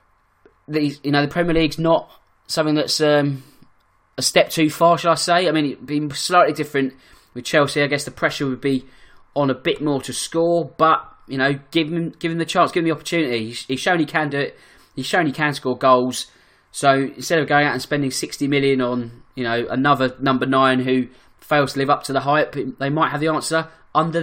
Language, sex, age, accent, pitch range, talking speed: English, male, 20-39, British, 130-165 Hz, 230 wpm